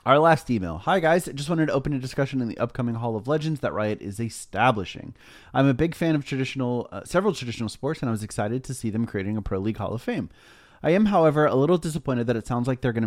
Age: 30-49